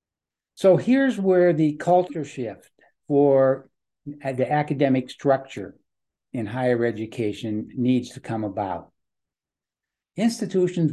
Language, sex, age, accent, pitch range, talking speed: English, male, 60-79, American, 130-160 Hz, 100 wpm